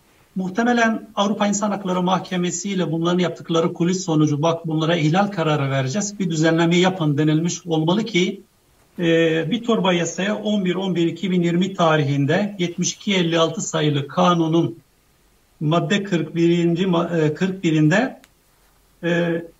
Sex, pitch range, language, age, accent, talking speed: male, 165-205 Hz, Turkish, 60-79, native, 95 wpm